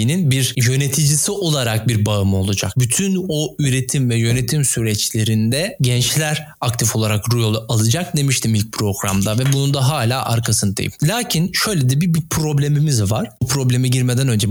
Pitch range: 110-140 Hz